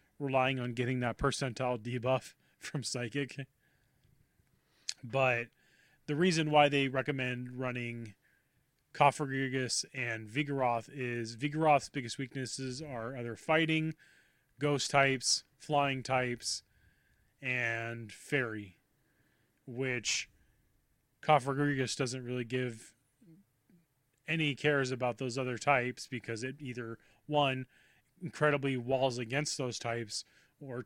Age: 20-39